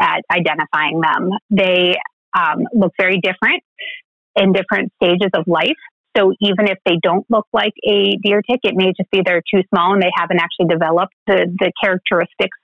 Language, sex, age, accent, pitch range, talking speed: English, female, 30-49, American, 185-250 Hz, 180 wpm